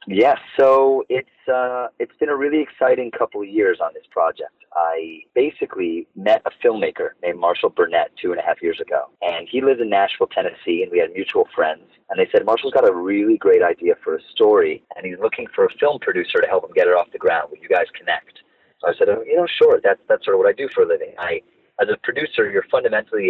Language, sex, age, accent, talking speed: English, male, 30-49, American, 240 wpm